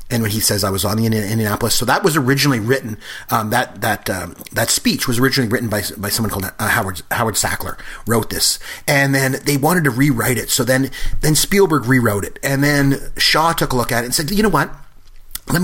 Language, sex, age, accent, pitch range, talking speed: English, male, 30-49, American, 110-145 Hz, 230 wpm